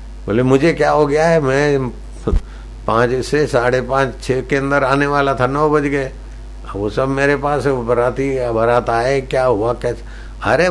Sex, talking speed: male, 185 wpm